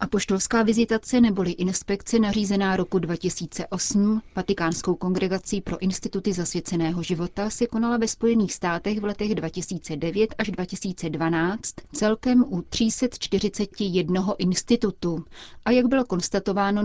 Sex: female